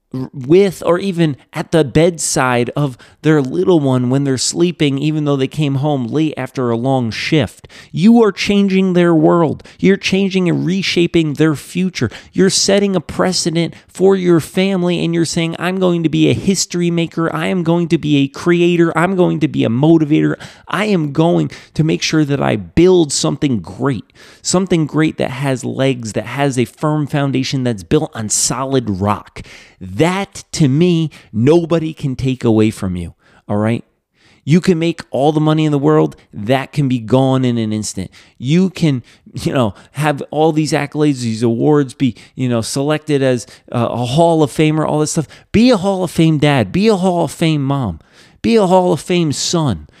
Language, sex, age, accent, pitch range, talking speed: English, male, 30-49, American, 130-170 Hz, 190 wpm